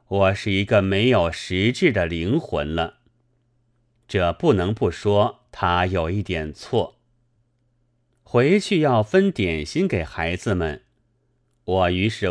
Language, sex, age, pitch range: Chinese, male, 30-49, 95-120 Hz